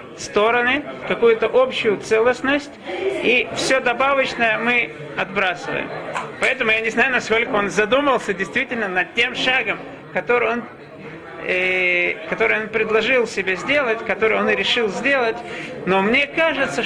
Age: 40-59